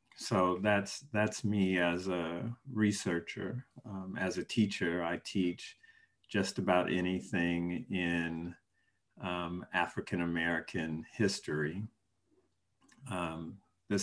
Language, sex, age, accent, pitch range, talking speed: English, male, 50-69, American, 90-115 Hz, 95 wpm